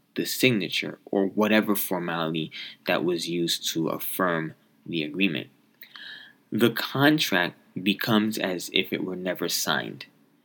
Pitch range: 90-115 Hz